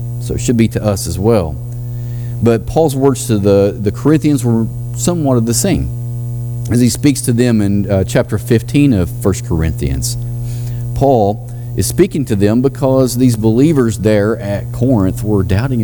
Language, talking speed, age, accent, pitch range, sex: English, 170 wpm, 40-59, American, 105-120 Hz, male